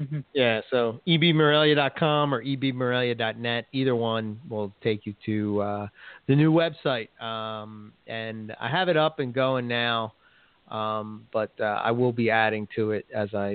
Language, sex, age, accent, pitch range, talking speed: English, male, 30-49, American, 110-125 Hz, 155 wpm